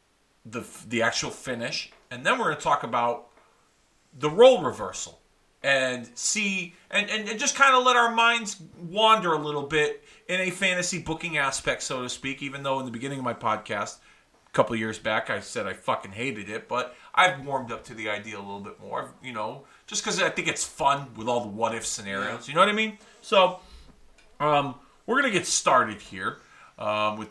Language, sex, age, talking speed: English, male, 40-59, 210 wpm